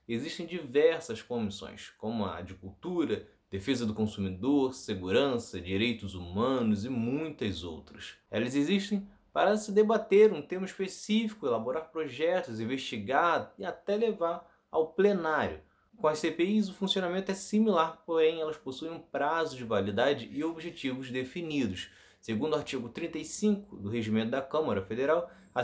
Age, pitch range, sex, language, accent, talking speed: 20-39, 115-170 Hz, male, Portuguese, Brazilian, 140 wpm